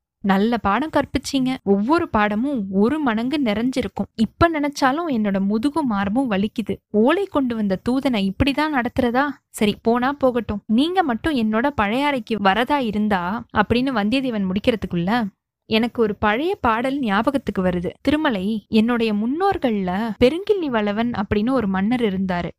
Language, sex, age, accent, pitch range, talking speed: Tamil, female, 20-39, native, 205-270 Hz, 125 wpm